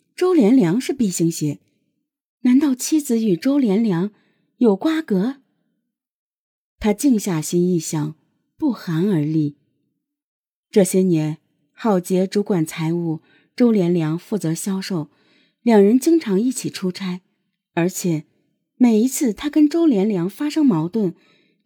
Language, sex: Chinese, female